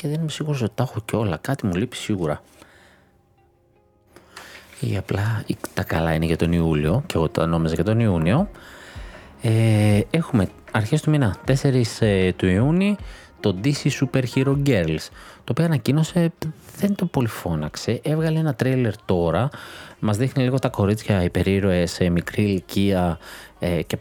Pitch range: 90-135 Hz